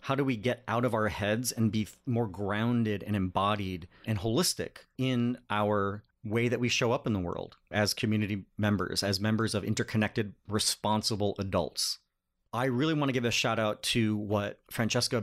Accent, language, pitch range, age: American, English, 105-125 Hz, 30-49